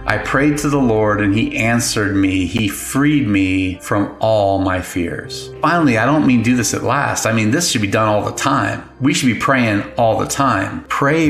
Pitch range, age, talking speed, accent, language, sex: 100-135 Hz, 30-49, 220 wpm, American, English, male